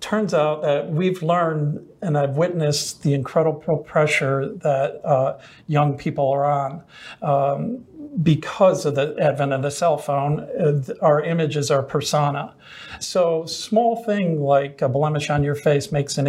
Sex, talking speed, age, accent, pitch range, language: male, 155 wpm, 50-69, American, 140-170 Hz, English